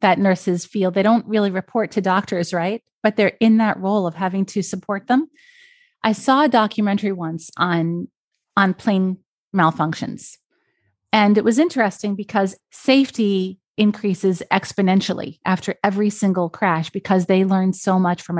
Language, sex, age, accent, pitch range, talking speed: English, female, 30-49, American, 180-215 Hz, 155 wpm